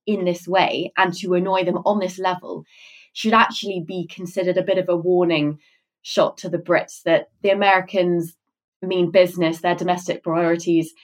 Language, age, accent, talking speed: English, 20-39, British, 170 wpm